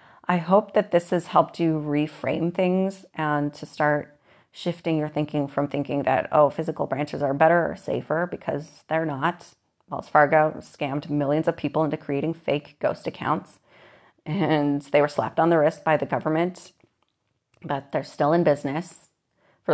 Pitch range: 145-170 Hz